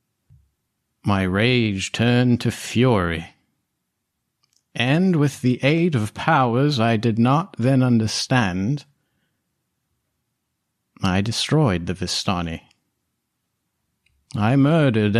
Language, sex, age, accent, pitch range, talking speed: English, male, 50-69, American, 105-140 Hz, 85 wpm